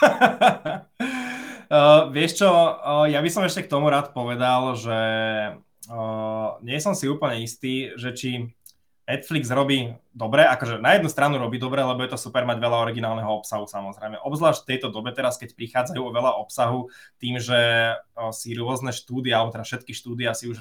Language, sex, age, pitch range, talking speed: Slovak, male, 20-39, 115-140 Hz, 180 wpm